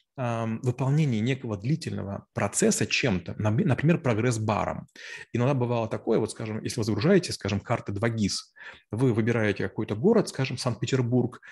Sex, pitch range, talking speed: male, 110-140 Hz, 130 wpm